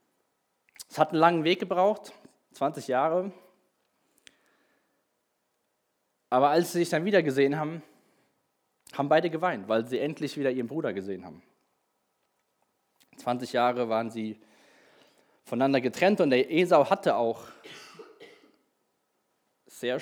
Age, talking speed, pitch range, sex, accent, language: 20-39, 115 wpm, 120-170 Hz, male, German, German